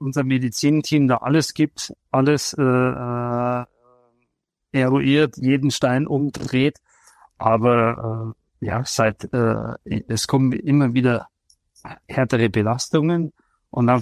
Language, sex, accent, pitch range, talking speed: German, male, German, 115-135 Hz, 105 wpm